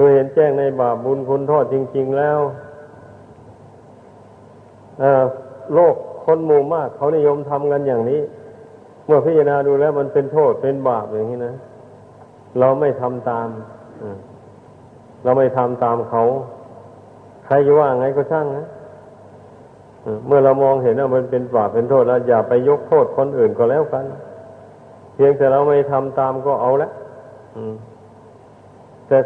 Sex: male